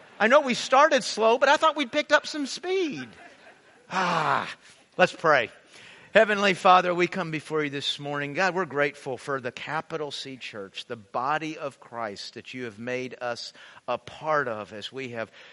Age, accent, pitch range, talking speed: 50-69, American, 115-145 Hz, 180 wpm